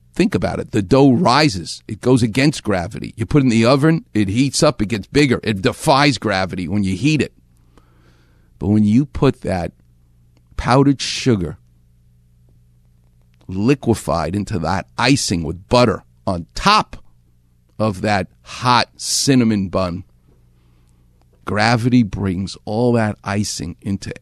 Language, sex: English, male